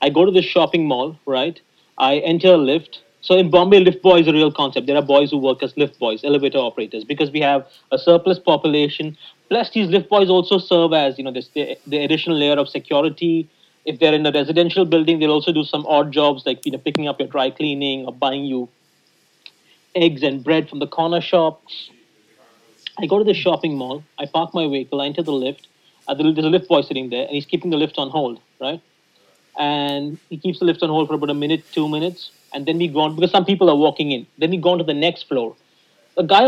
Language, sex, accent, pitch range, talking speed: English, male, Indian, 145-175 Hz, 240 wpm